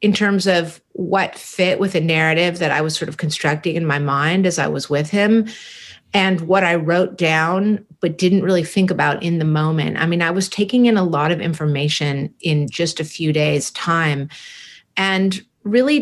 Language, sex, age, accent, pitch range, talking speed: English, female, 40-59, American, 160-210 Hz, 200 wpm